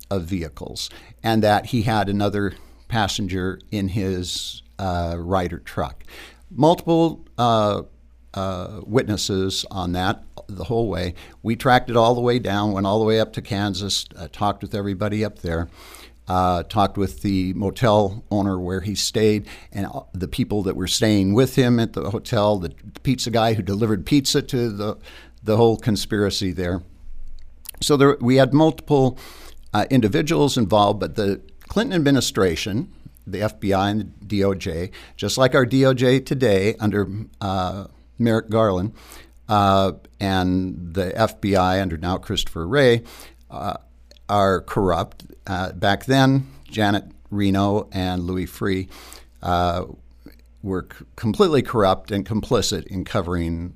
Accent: American